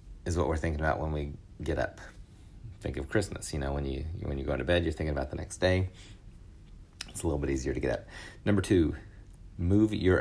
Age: 30-49